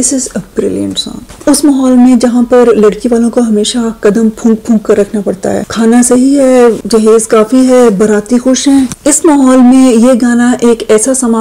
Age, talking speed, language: 30-49, 170 wpm, Urdu